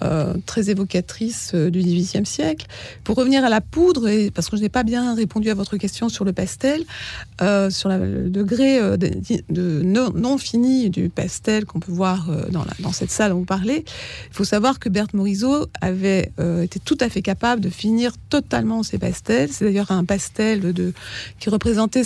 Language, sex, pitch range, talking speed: French, female, 180-225 Hz, 210 wpm